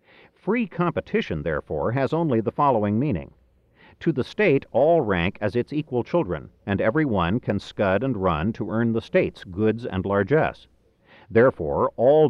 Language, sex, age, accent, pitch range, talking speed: English, male, 50-69, American, 105-140 Hz, 160 wpm